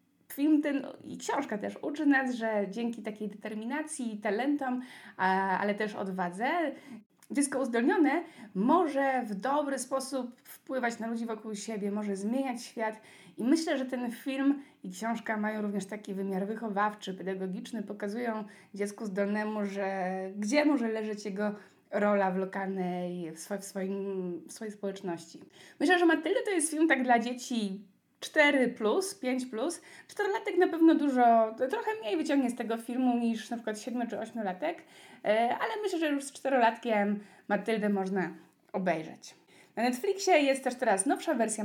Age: 20-39